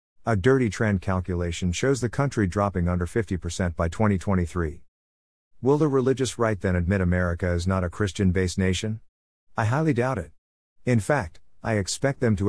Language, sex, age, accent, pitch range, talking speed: English, male, 50-69, American, 90-110 Hz, 160 wpm